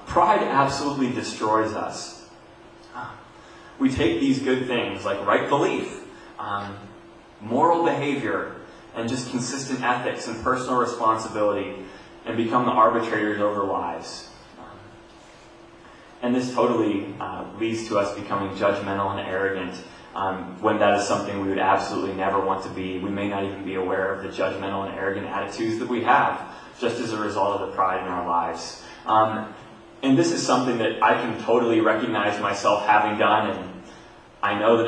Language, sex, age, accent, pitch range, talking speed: English, male, 20-39, American, 100-120 Hz, 160 wpm